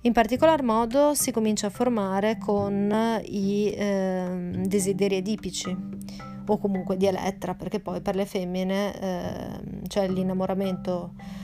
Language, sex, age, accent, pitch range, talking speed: Italian, female, 30-49, native, 190-225 Hz, 125 wpm